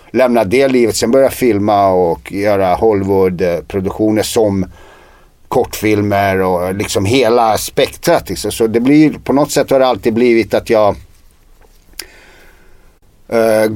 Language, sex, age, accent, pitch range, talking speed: Swedish, male, 50-69, native, 105-120 Hz, 120 wpm